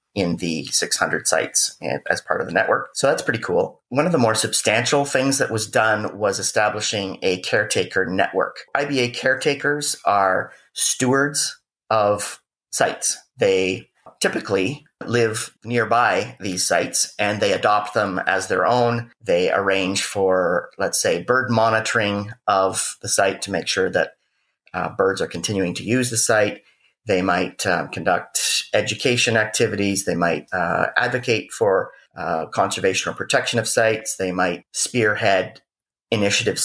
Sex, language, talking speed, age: male, English, 145 wpm, 40-59